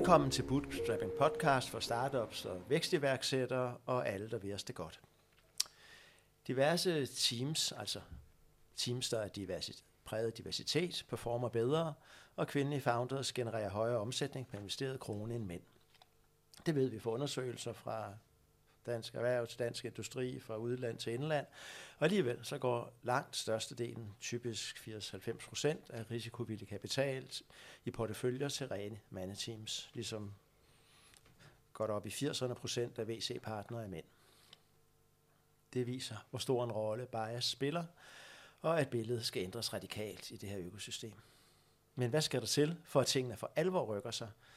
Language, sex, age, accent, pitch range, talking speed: Danish, male, 60-79, native, 110-135 Hz, 140 wpm